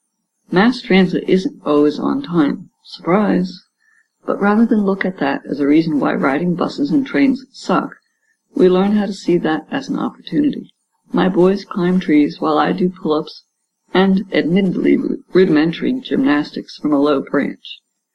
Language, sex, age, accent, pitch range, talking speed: English, female, 60-79, American, 165-225 Hz, 155 wpm